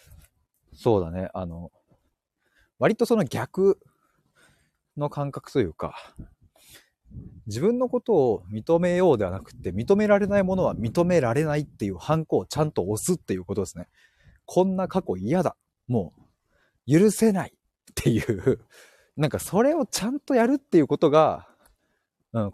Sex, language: male, Japanese